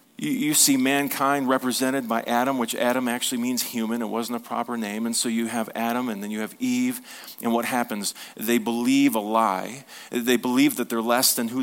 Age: 40-59